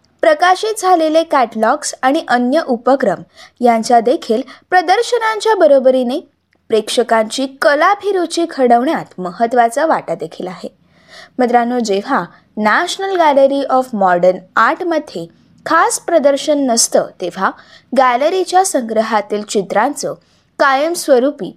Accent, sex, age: native, female, 20-39